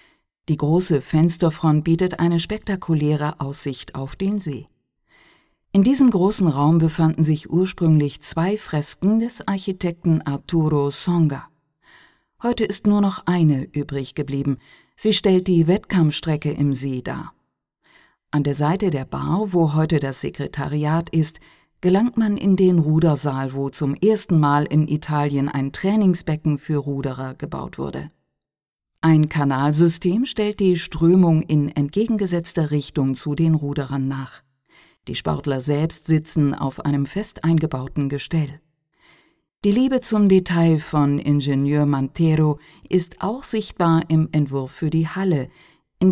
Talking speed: 130 wpm